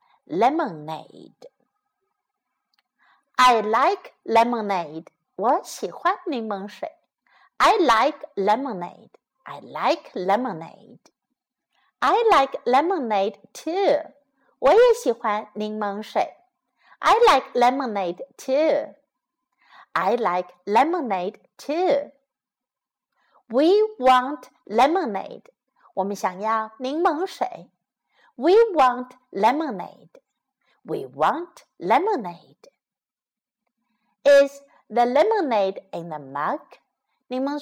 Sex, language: female, Chinese